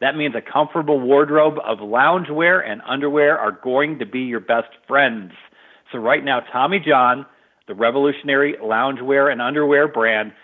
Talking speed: 155 wpm